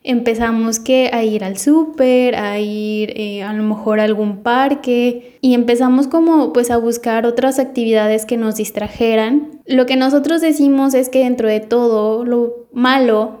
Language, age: English, 10-29